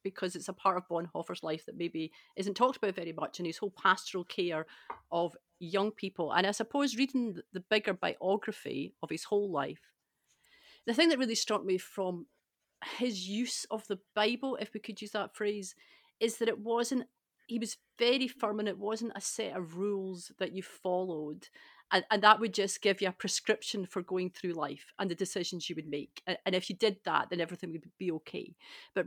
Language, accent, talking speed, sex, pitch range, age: English, British, 205 wpm, female, 180-215 Hz, 40-59